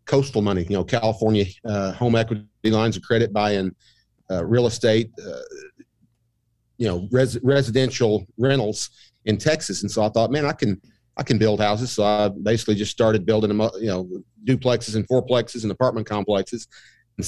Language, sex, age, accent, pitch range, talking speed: English, male, 40-59, American, 105-120 Hz, 175 wpm